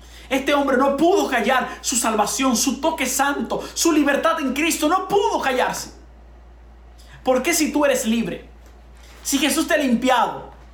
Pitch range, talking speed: 175-280 Hz, 150 wpm